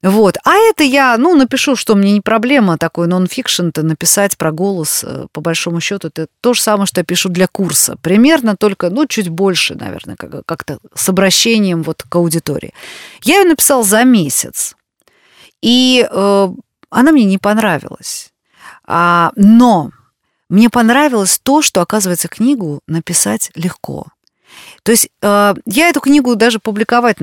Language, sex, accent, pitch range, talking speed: Russian, female, native, 170-235 Hz, 145 wpm